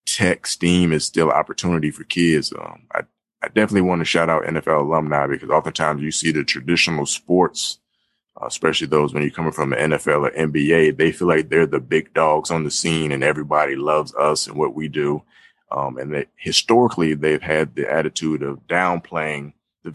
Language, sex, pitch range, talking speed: English, male, 75-85 Hz, 195 wpm